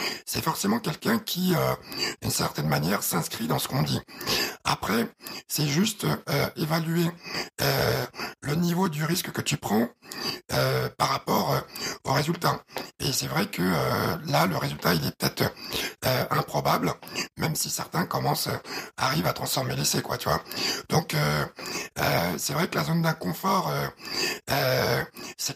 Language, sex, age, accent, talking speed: French, male, 60-79, French, 150 wpm